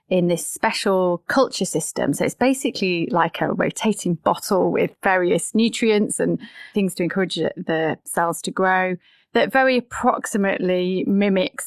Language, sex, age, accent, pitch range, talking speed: English, female, 30-49, British, 175-225 Hz, 140 wpm